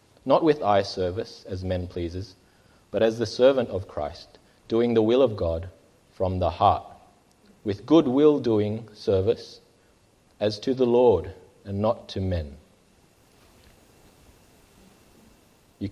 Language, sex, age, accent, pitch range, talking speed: English, male, 30-49, Australian, 95-110 Hz, 130 wpm